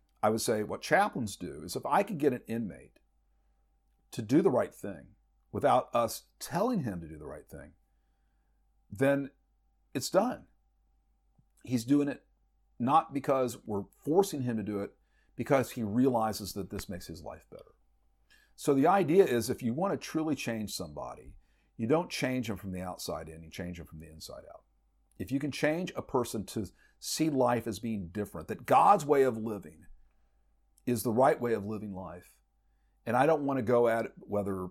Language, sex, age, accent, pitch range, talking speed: English, male, 50-69, American, 70-120 Hz, 190 wpm